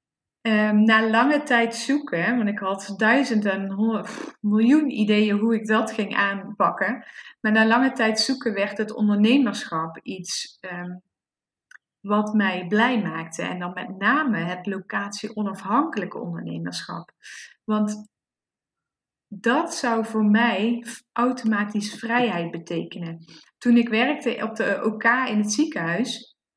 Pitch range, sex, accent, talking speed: 210-240 Hz, female, Dutch, 115 wpm